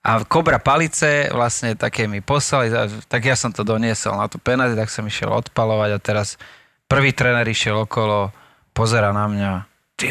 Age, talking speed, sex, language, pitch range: 30-49, 170 wpm, male, Slovak, 110-140 Hz